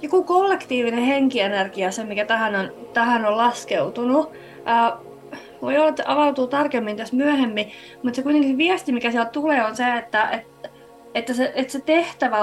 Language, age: Finnish, 20-39